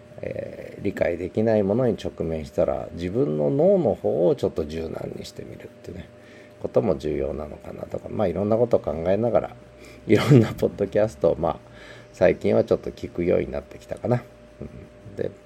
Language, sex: Japanese, male